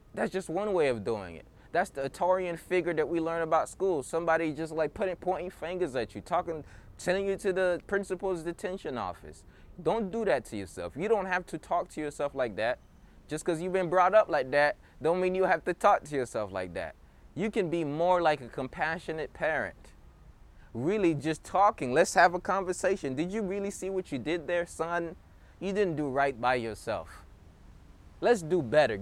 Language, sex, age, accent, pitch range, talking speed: English, male, 20-39, American, 150-190 Hz, 200 wpm